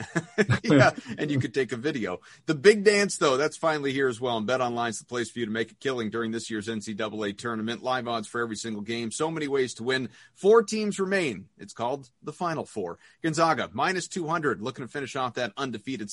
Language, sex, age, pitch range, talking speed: English, male, 30-49, 115-155 Hz, 225 wpm